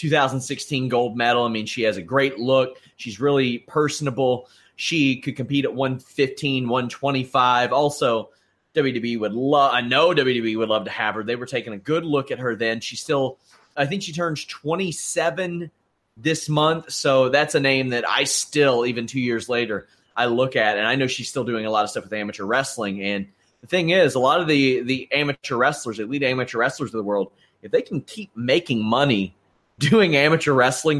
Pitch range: 120-155 Hz